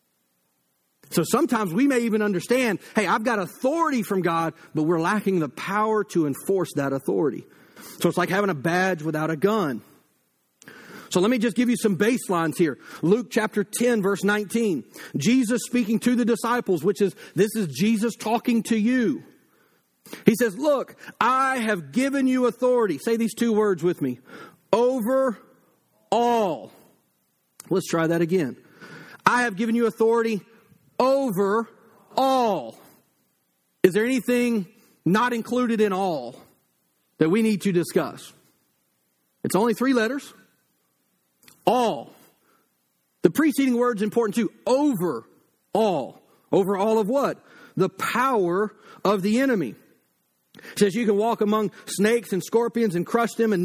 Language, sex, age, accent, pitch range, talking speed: English, male, 40-59, American, 180-240 Hz, 145 wpm